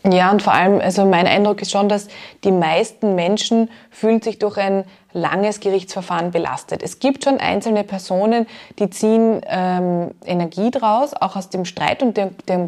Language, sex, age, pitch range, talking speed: German, female, 20-39, 190-220 Hz, 175 wpm